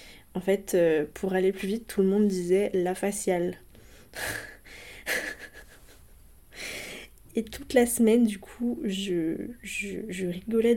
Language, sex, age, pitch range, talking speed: French, female, 20-39, 185-215 Hz, 125 wpm